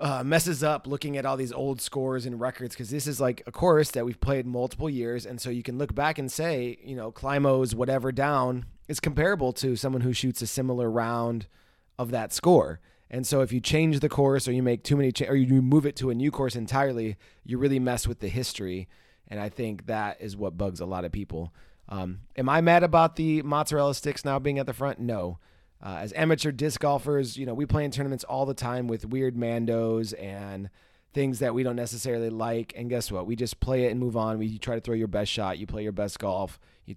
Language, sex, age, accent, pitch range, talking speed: English, male, 20-39, American, 110-135 Hz, 240 wpm